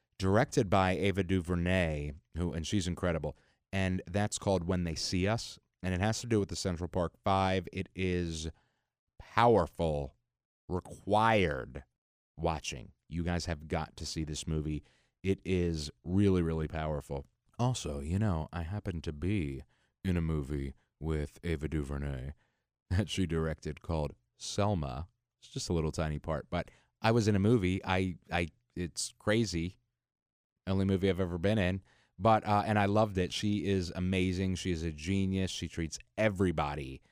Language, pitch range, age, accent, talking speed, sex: English, 80-100 Hz, 30-49, American, 160 wpm, male